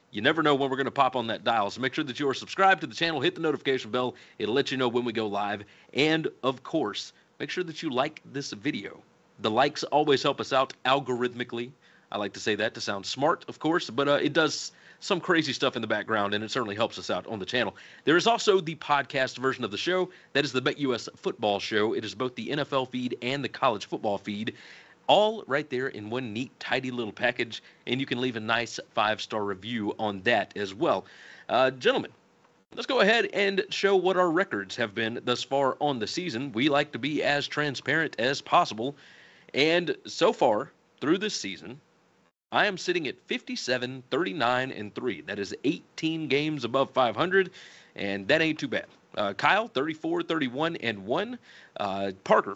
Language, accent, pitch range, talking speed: English, American, 115-160 Hz, 210 wpm